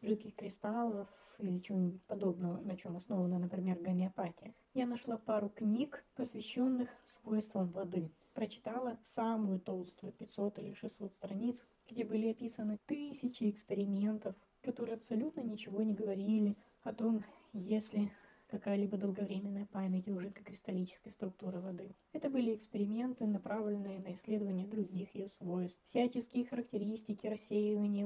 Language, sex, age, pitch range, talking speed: Russian, female, 20-39, 200-225 Hz, 120 wpm